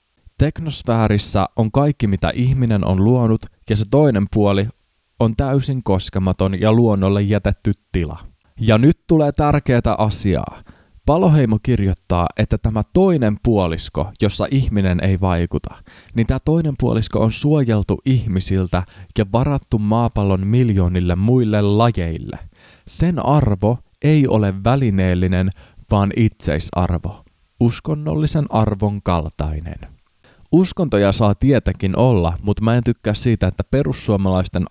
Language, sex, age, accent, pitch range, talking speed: Finnish, male, 20-39, native, 95-125 Hz, 115 wpm